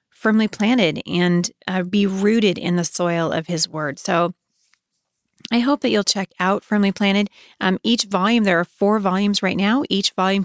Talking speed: 185 wpm